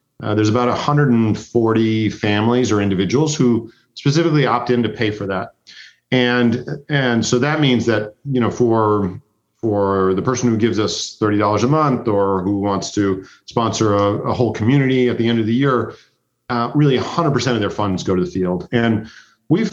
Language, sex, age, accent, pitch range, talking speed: English, male, 40-59, American, 110-135 Hz, 190 wpm